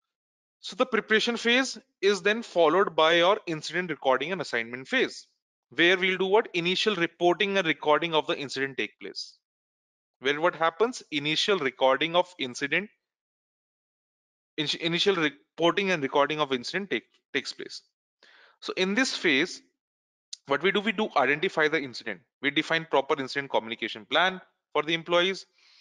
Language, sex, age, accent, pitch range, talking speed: English, male, 30-49, Indian, 130-170 Hz, 145 wpm